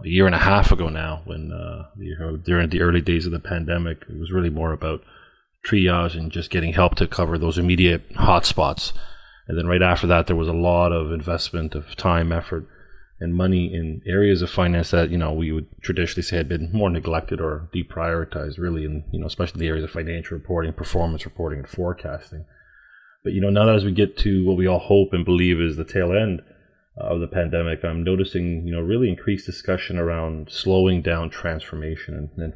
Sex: male